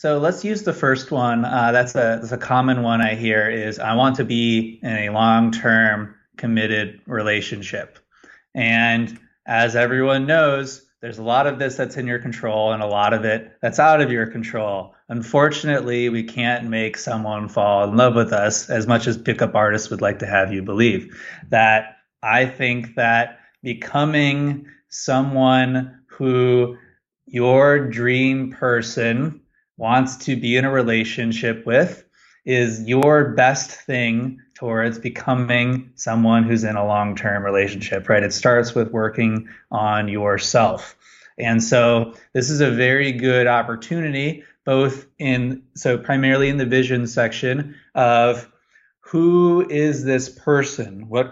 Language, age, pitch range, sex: English, 20-39, 115-130 Hz, male